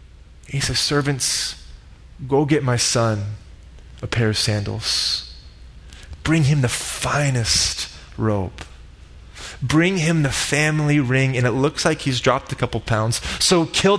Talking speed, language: 135 wpm, English